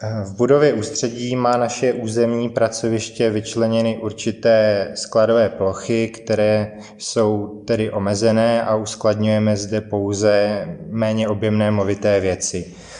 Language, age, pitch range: Czech, 20-39, 95-110 Hz